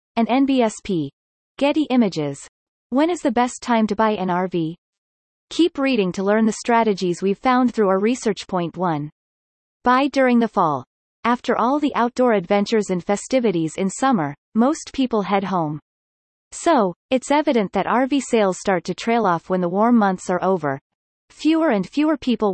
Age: 30-49